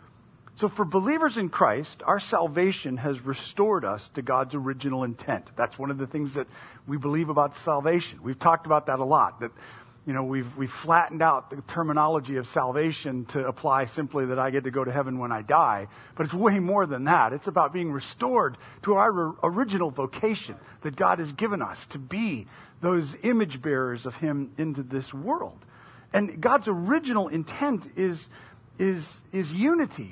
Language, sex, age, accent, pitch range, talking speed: English, male, 50-69, American, 130-175 Hz, 180 wpm